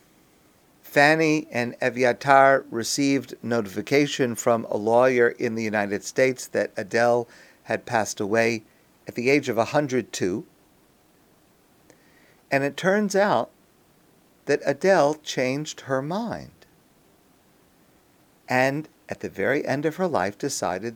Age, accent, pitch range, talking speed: 50-69, American, 120-165 Hz, 115 wpm